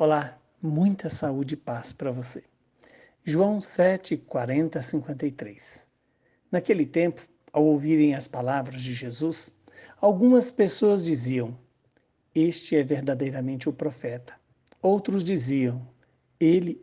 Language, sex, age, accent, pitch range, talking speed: Portuguese, male, 60-79, Brazilian, 135-170 Hz, 105 wpm